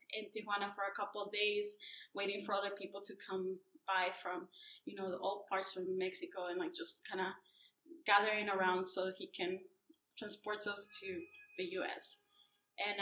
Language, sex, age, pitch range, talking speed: English, female, 20-39, 195-230 Hz, 175 wpm